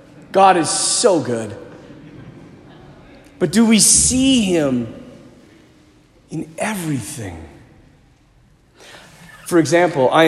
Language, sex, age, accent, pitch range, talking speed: English, male, 40-59, American, 130-185 Hz, 80 wpm